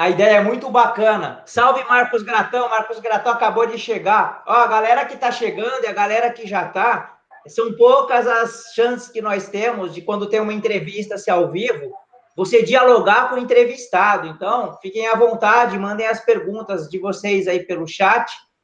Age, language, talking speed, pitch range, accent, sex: 20-39, Portuguese, 185 wpm, 200-235 Hz, Brazilian, male